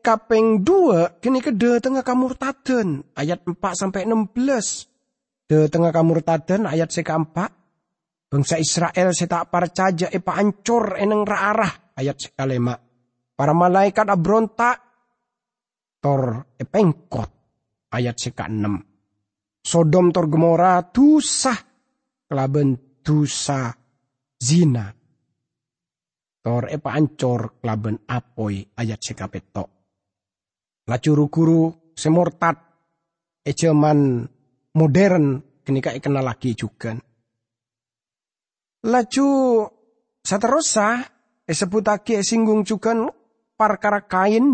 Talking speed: 95 wpm